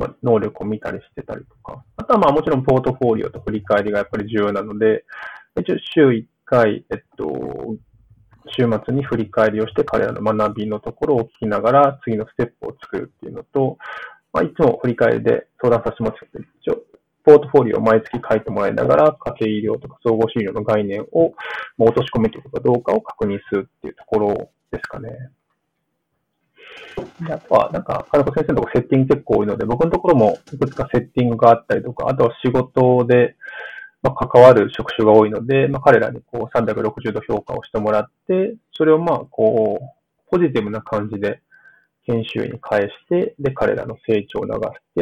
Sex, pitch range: male, 110-145 Hz